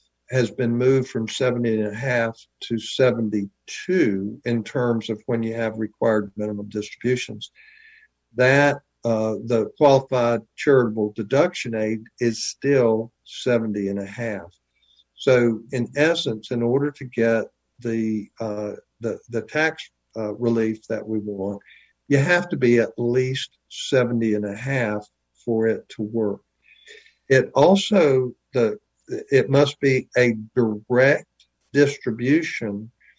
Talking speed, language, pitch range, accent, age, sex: 130 wpm, English, 110-130 Hz, American, 60-79, male